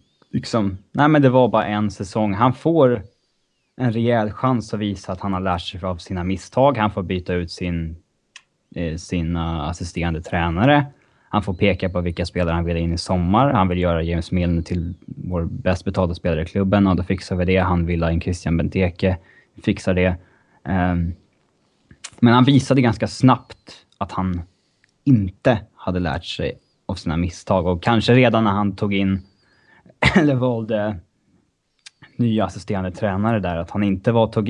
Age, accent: 20-39, Norwegian